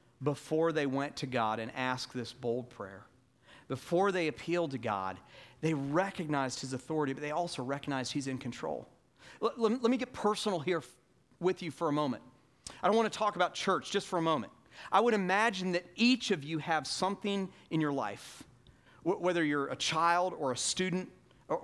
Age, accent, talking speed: 40-59, American, 190 wpm